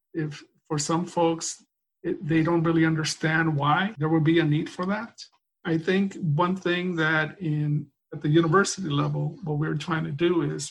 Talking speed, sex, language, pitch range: 185 wpm, male, English, 150-170 Hz